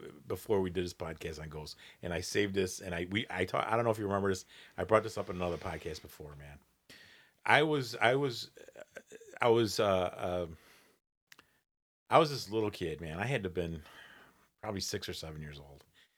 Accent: American